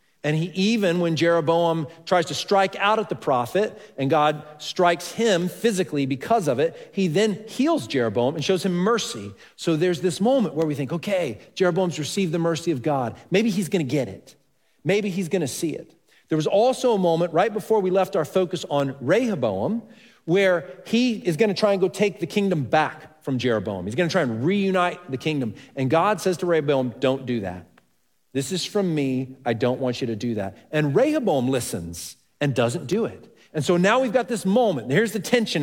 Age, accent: 40-59, American